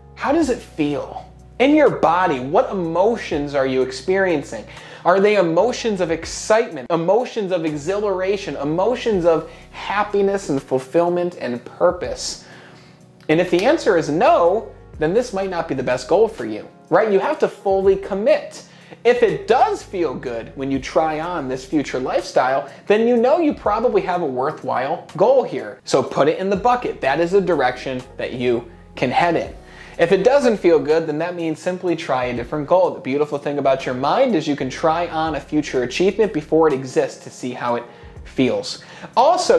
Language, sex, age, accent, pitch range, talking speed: English, male, 30-49, American, 140-210 Hz, 185 wpm